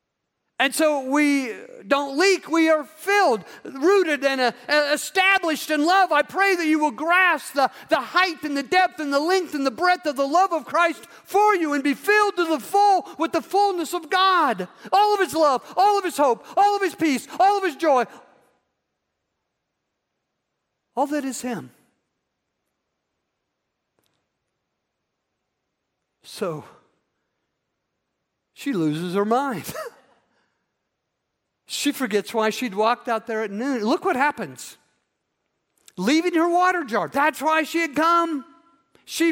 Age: 50-69